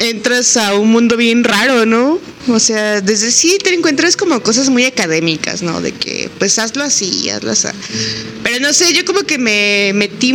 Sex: female